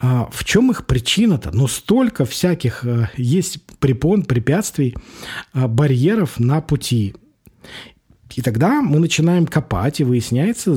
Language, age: Russian, 40-59